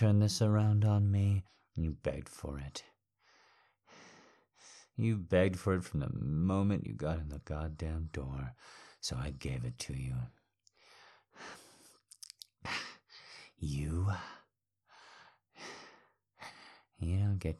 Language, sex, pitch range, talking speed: English, male, 75-100 Hz, 110 wpm